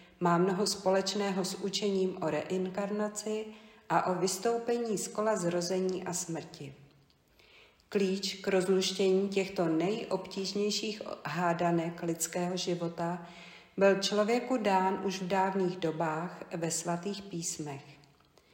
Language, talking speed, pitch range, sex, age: Czech, 105 wpm, 170-200 Hz, female, 50-69